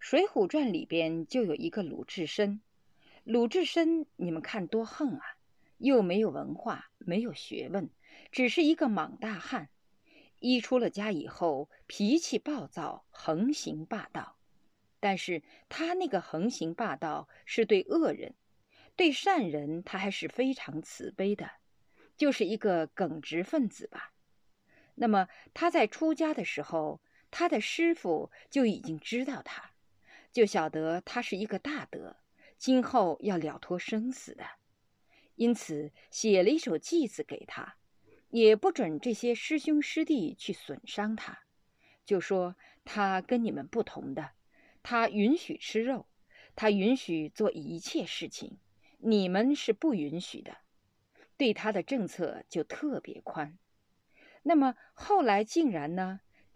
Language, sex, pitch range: Chinese, female, 190-295 Hz